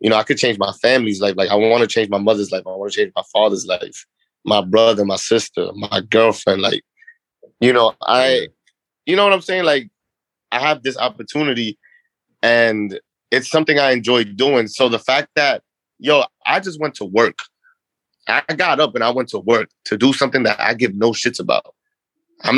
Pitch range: 120-180 Hz